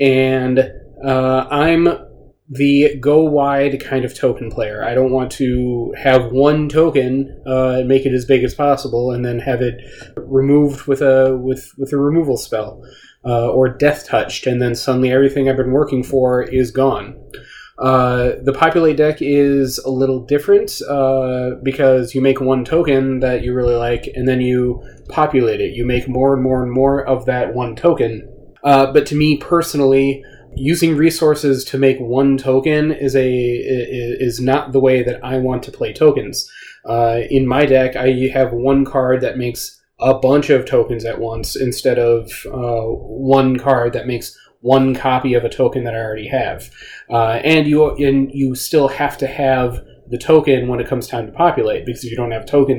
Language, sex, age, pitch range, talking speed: English, male, 30-49, 125-140 Hz, 185 wpm